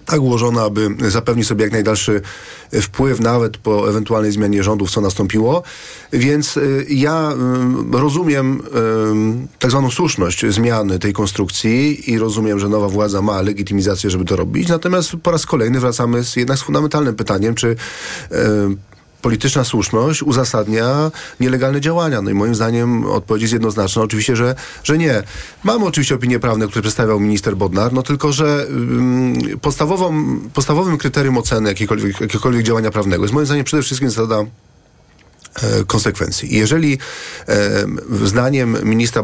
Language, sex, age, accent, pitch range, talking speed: Polish, male, 40-59, native, 105-130 Hz, 135 wpm